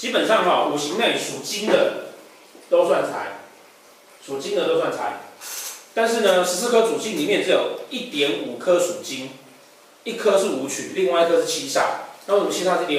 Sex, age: male, 30-49